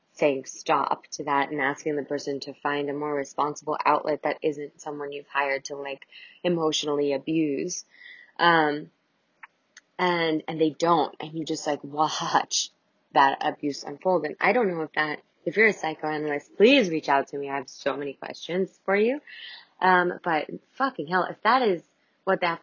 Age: 20-39